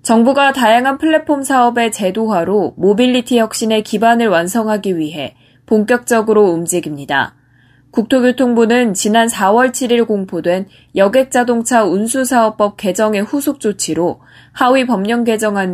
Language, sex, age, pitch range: Korean, female, 20-39, 180-240 Hz